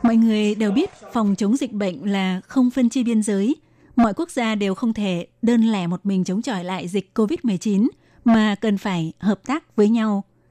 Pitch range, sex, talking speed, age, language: 195-230 Hz, female, 215 wpm, 20-39, Vietnamese